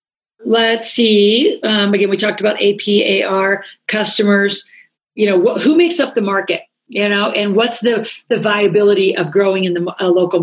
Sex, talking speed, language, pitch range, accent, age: female, 185 wpm, English, 185-210 Hz, American, 40-59